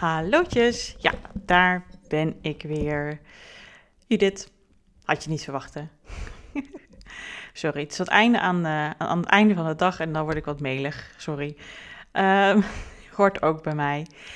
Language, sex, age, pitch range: Dutch, female, 30-49, 160-210 Hz